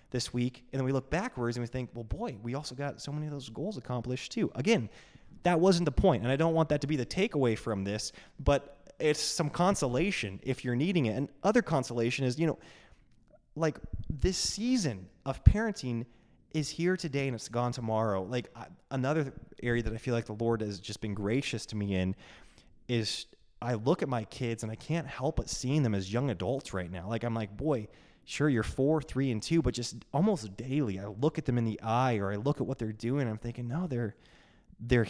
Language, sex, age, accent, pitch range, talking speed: English, male, 20-39, American, 115-150 Hz, 225 wpm